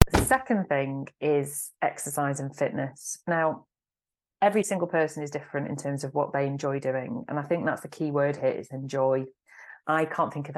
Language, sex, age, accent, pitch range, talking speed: English, female, 30-49, British, 135-155 Hz, 195 wpm